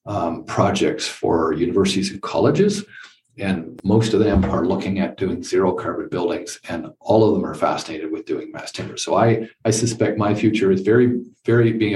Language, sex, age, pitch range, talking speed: English, male, 50-69, 95-120 Hz, 185 wpm